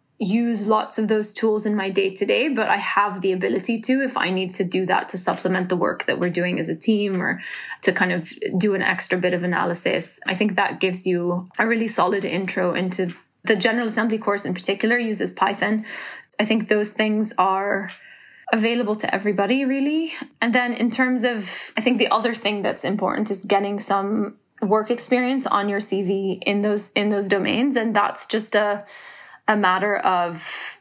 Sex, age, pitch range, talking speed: female, 20-39, 190-220 Hz, 195 wpm